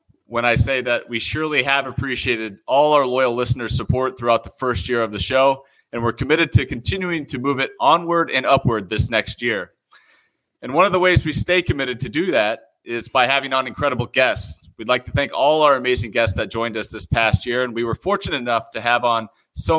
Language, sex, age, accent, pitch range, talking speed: English, male, 30-49, American, 115-140 Hz, 225 wpm